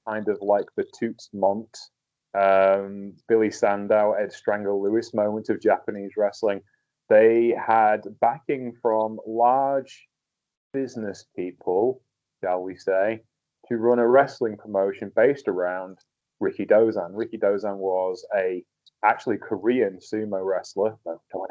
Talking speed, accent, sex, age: 130 wpm, British, male, 30-49